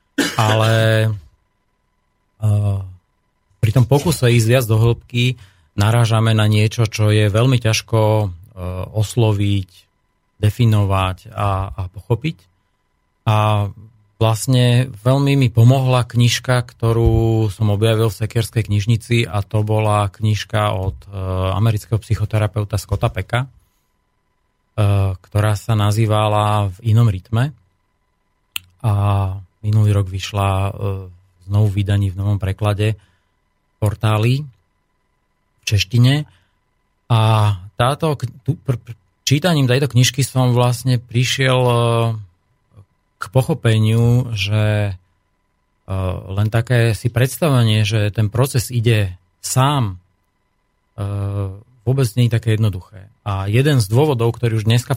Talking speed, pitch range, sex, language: 105 wpm, 100-120 Hz, male, Slovak